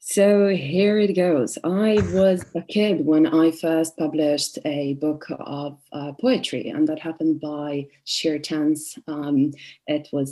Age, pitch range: 30-49, 150-205 Hz